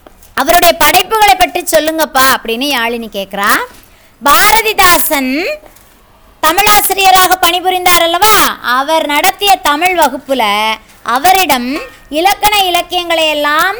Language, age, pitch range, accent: Tamil, 30-49, 265-360 Hz, native